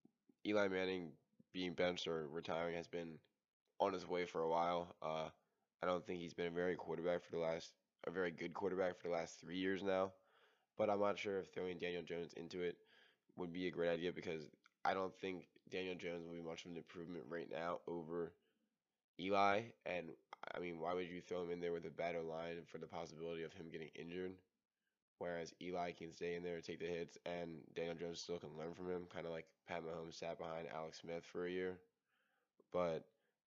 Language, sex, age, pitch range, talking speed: English, male, 10-29, 85-90 Hz, 215 wpm